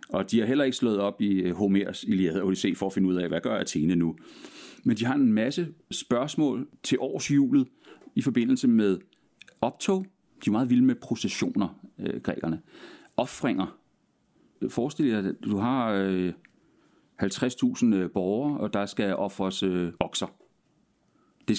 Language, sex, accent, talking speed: Danish, male, native, 150 wpm